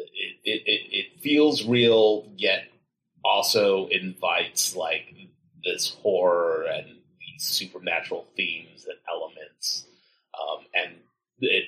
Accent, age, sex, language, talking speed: American, 30-49, male, English, 105 wpm